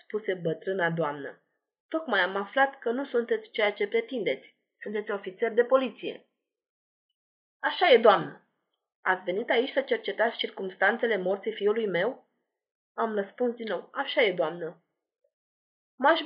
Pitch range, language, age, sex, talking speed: 225-330 Hz, Romanian, 20-39, female, 135 wpm